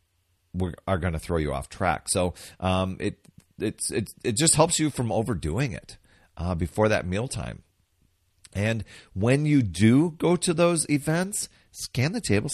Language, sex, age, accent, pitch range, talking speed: English, male, 40-59, American, 85-115 Hz, 165 wpm